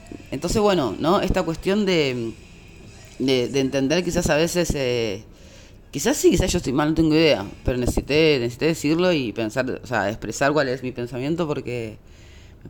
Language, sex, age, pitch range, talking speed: Spanish, female, 20-39, 115-160 Hz, 175 wpm